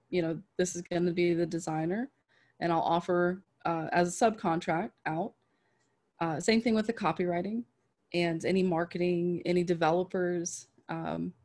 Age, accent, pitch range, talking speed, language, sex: 20-39, American, 175-210 Hz, 145 wpm, English, female